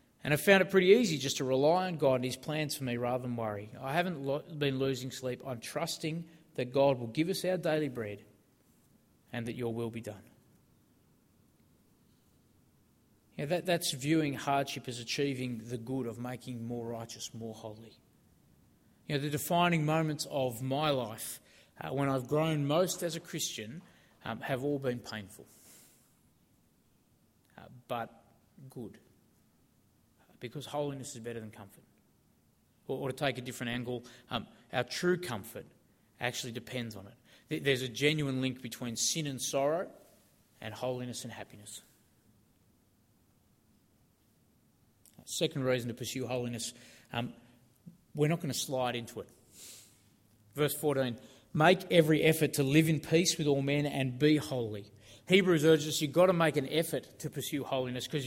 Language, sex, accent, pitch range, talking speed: English, male, Australian, 120-150 Hz, 160 wpm